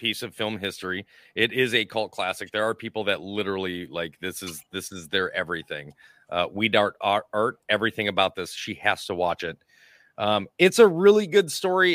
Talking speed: 200 wpm